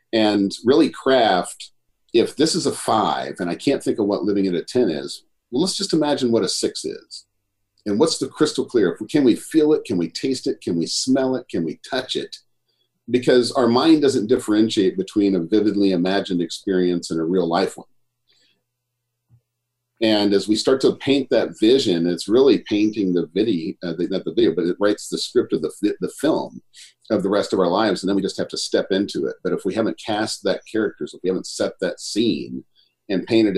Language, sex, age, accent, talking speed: English, male, 50-69, American, 215 wpm